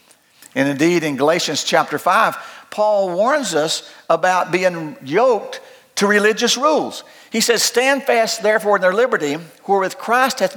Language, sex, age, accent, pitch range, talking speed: English, male, 50-69, American, 195-270 Hz, 160 wpm